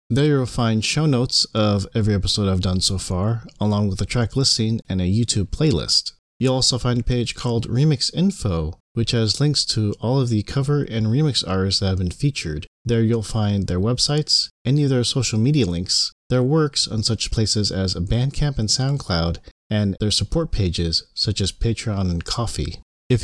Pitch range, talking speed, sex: 95-130 Hz, 190 wpm, male